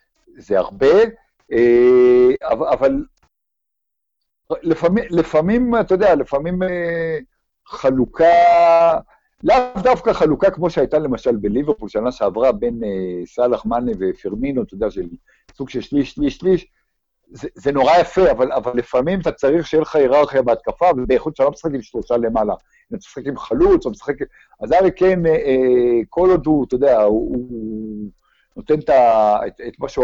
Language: Hebrew